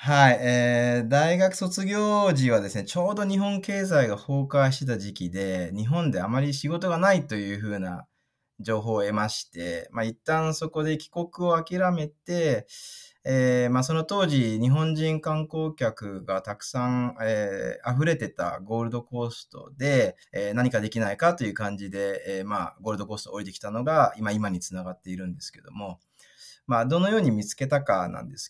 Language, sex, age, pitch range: Japanese, male, 20-39, 110-175 Hz